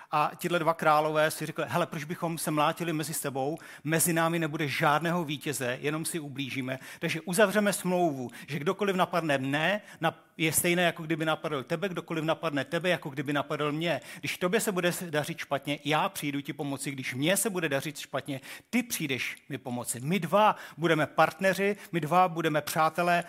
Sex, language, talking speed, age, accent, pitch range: male, Czech, 180 wpm, 40-59, native, 145-180 Hz